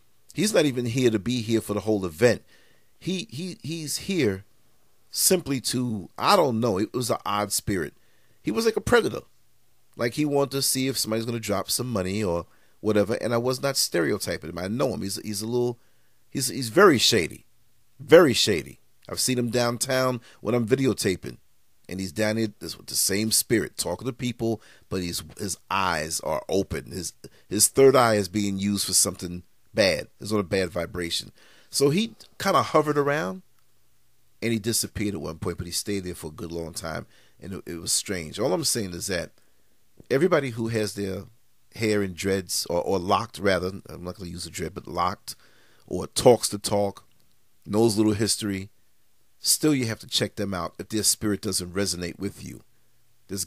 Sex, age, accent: male, 40-59, American